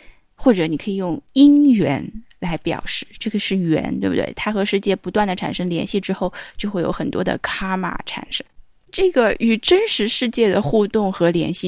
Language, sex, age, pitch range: Chinese, female, 10-29, 175-230 Hz